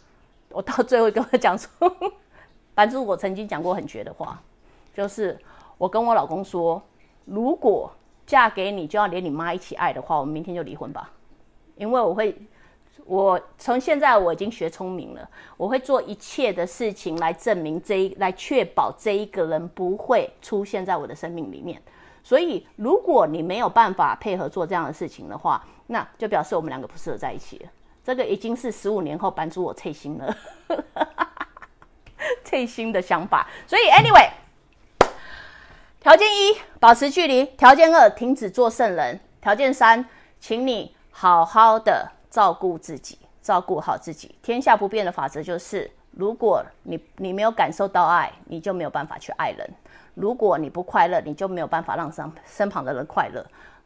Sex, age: female, 30-49